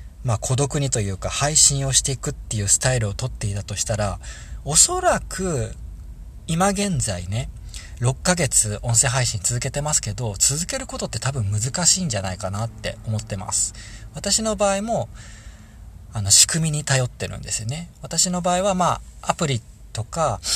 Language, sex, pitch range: Japanese, male, 105-150 Hz